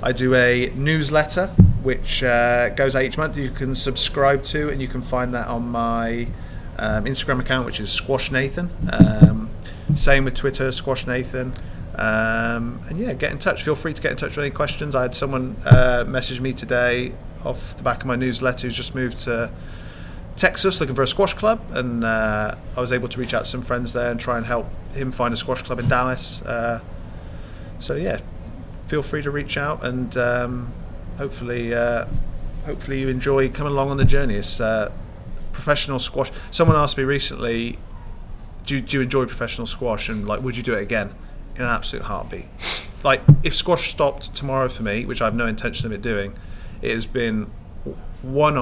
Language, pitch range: English, 105-130 Hz